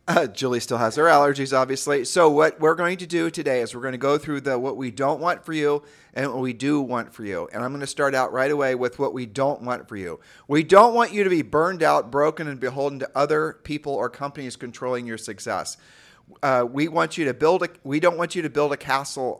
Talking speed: 255 wpm